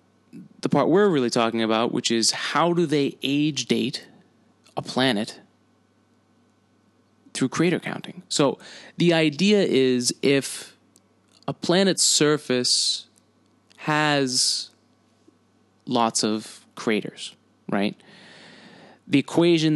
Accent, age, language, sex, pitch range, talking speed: American, 20-39, English, male, 115-150 Hz, 100 wpm